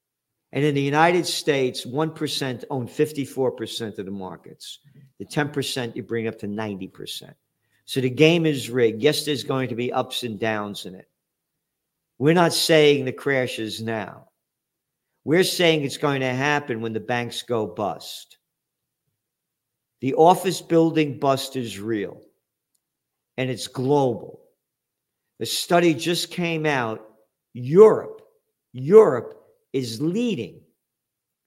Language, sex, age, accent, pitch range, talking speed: English, male, 50-69, American, 120-155 Hz, 135 wpm